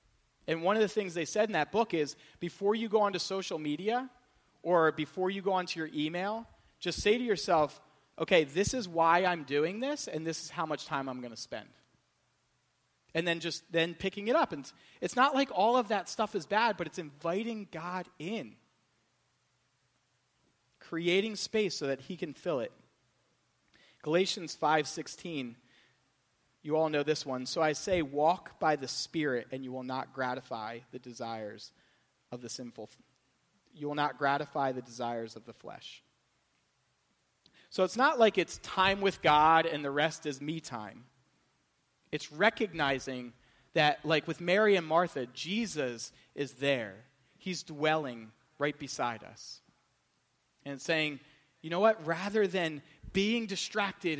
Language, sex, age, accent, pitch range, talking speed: English, male, 30-49, American, 140-190 Hz, 165 wpm